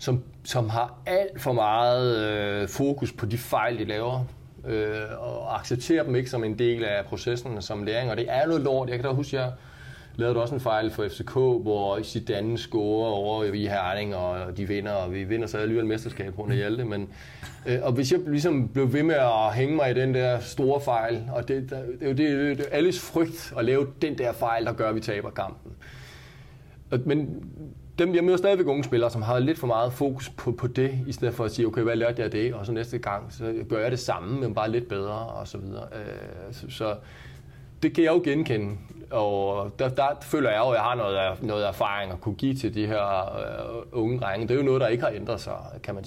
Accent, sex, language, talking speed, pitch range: native, male, Danish, 235 wpm, 105-130 Hz